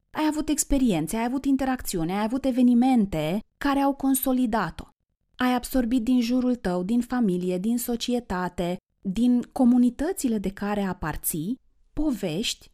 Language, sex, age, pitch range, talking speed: Romanian, female, 30-49, 195-255 Hz, 125 wpm